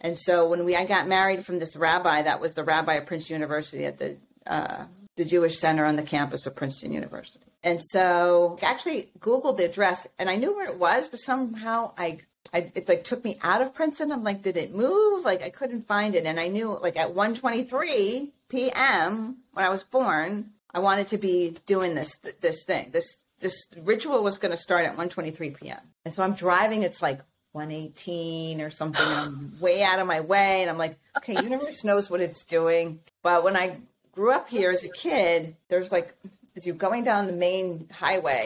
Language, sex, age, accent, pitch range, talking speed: English, female, 40-59, American, 165-210 Hz, 210 wpm